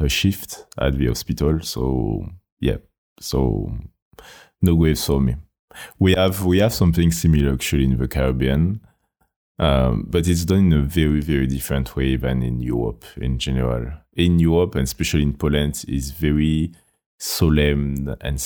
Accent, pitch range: French, 70-85 Hz